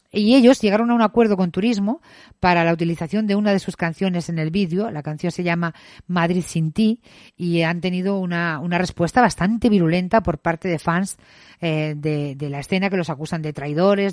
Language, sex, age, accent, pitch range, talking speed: Spanish, female, 50-69, Spanish, 170-225 Hz, 205 wpm